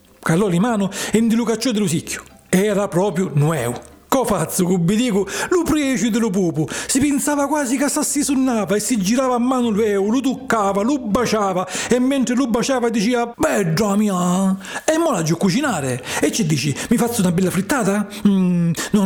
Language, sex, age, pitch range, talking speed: Italian, male, 40-59, 190-265 Hz, 190 wpm